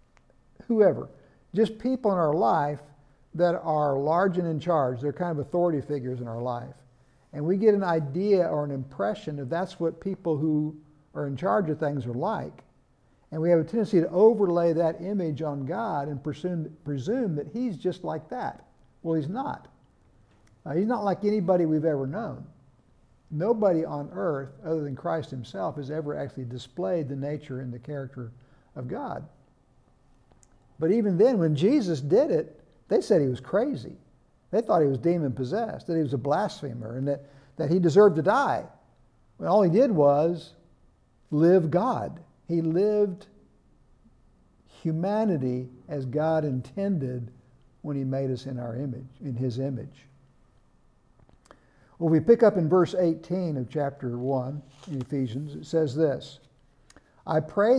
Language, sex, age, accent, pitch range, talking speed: English, male, 60-79, American, 135-175 Hz, 165 wpm